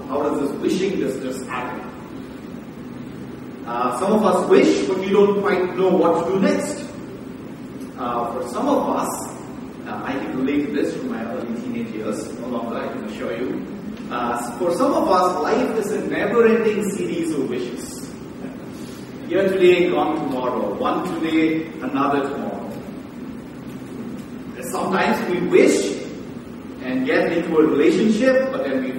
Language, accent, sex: English, Indian, male